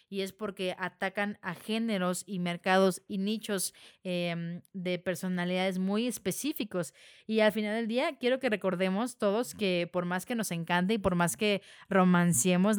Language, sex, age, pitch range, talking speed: Spanish, female, 20-39, 185-225 Hz, 165 wpm